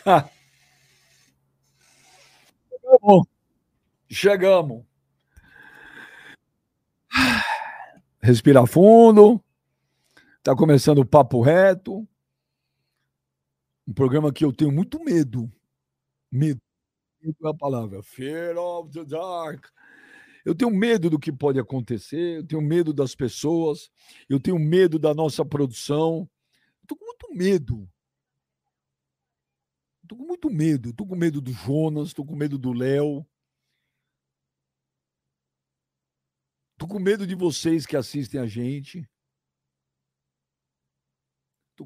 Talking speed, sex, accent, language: 100 wpm, male, Brazilian, Portuguese